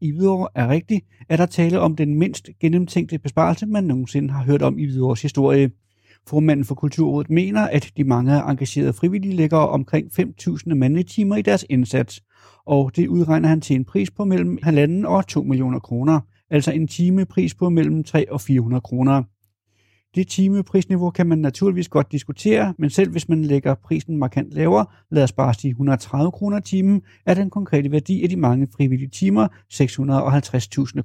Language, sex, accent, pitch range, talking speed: Danish, male, native, 130-175 Hz, 175 wpm